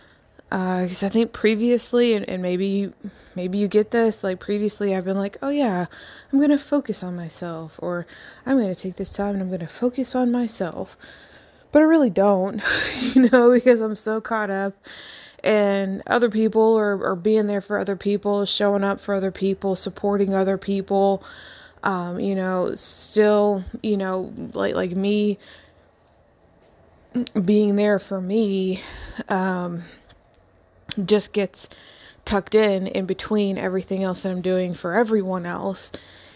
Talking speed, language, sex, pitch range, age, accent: 160 wpm, English, female, 190-225 Hz, 20-39, American